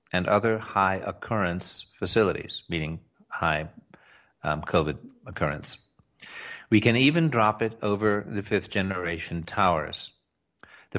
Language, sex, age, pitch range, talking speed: English, male, 50-69, 90-115 Hz, 105 wpm